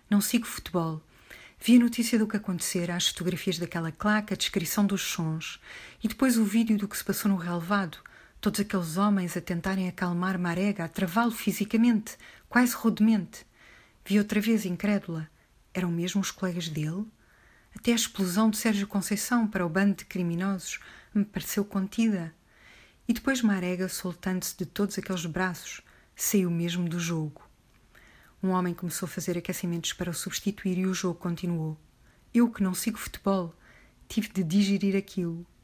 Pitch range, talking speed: 180-210 Hz, 160 wpm